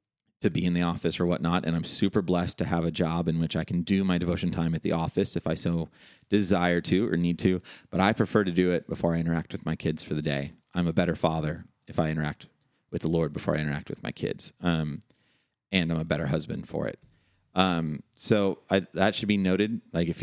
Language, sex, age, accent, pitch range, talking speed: English, male, 30-49, American, 85-105 Hz, 245 wpm